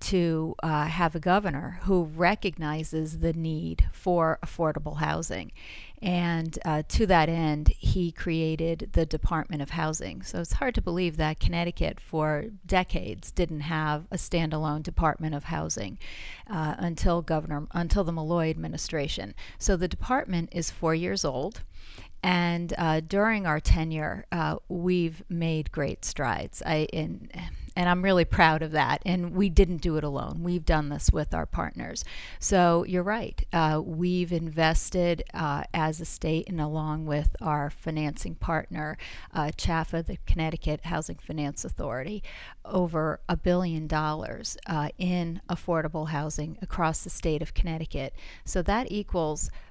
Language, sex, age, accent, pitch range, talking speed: English, female, 40-59, American, 155-175 Hz, 145 wpm